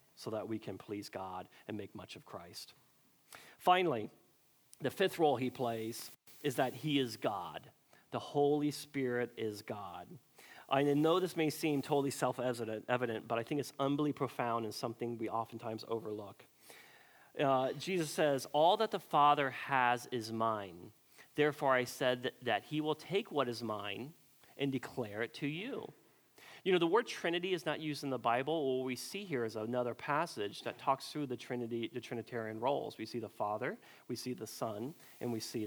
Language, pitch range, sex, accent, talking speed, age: English, 115-145 Hz, male, American, 180 wpm, 40-59